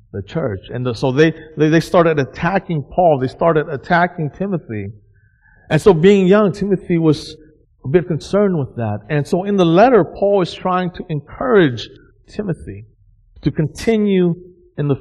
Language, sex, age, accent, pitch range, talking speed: English, male, 50-69, American, 115-170 Hz, 165 wpm